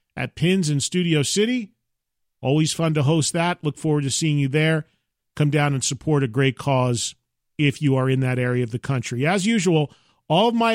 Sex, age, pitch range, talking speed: male, 40-59, 145-195 Hz, 205 wpm